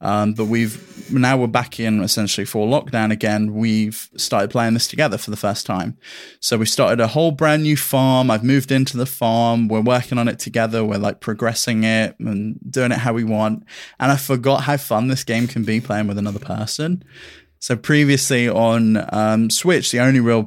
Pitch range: 110-125 Hz